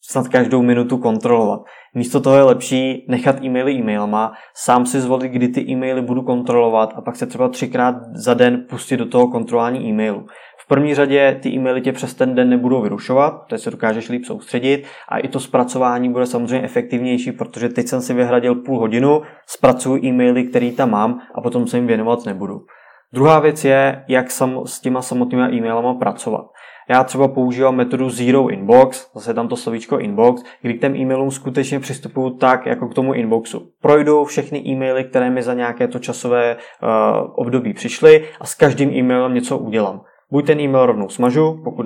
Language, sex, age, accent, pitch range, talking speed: Czech, male, 20-39, native, 120-135 Hz, 185 wpm